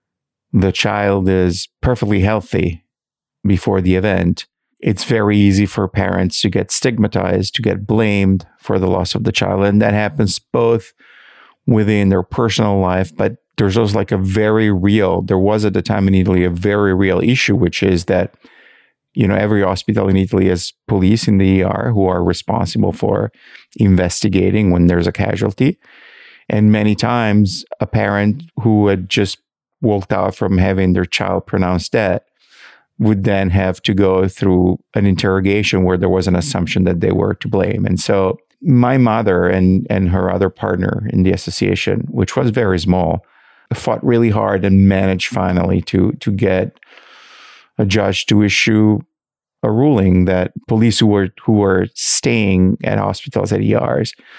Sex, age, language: male, 50-69, English